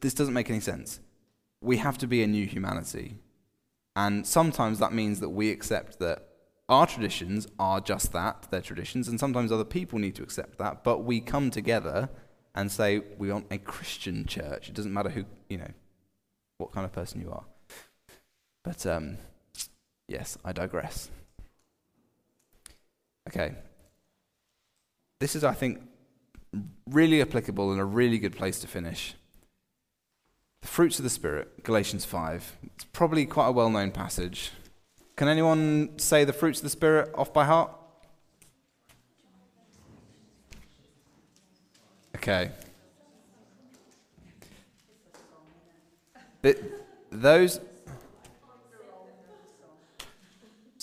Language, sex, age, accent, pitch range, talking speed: English, male, 20-39, British, 95-140 Hz, 120 wpm